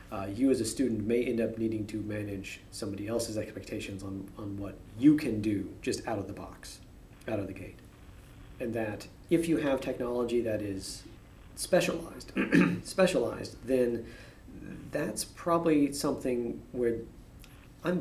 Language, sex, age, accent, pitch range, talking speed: English, male, 40-59, American, 100-120 Hz, 150 wpm